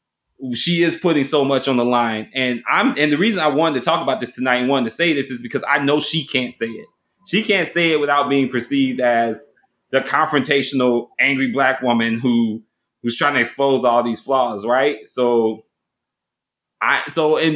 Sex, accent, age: male, American, 20-39